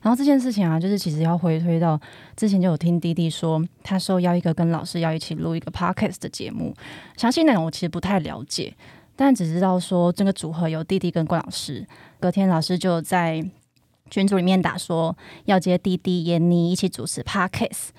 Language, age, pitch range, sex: Chinese, 20-39, 170-195 Hz, female